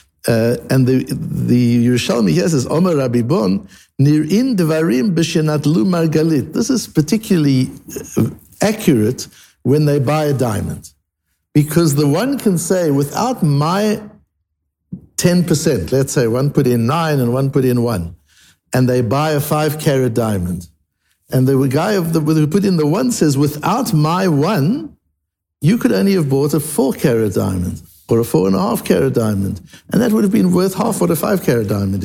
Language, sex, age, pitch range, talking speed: English, male, 60-79, 125-180 Hz, 155 wpm